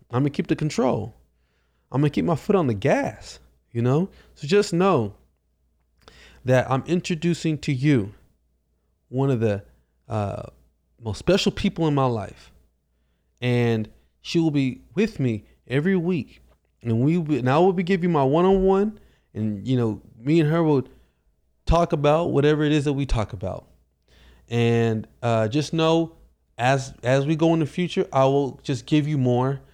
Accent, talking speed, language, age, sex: American, 175 wpm, English, 20-39, male